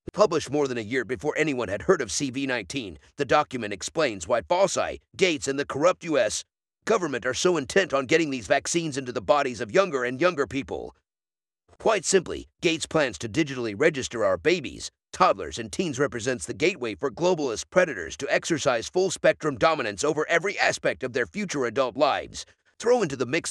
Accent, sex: American, male